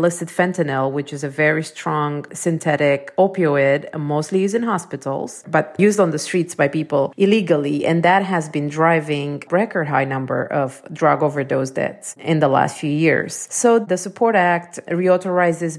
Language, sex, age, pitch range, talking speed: English, female, 30-49, 145-175 Hz, 165 wpm